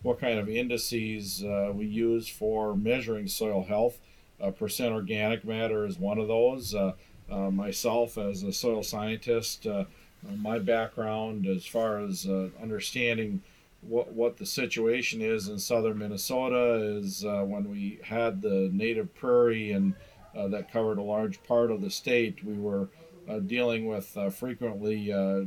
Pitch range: 105-125 Hz